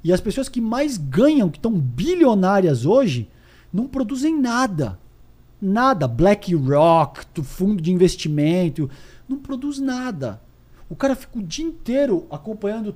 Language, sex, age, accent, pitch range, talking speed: Portuguese, male, 50-69, Brazilian, 150-230 Hz, 130 wpm